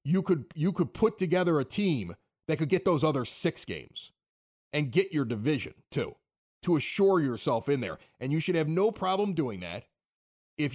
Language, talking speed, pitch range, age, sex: English, 190 wpm, 120-175 Hz, 40-59, male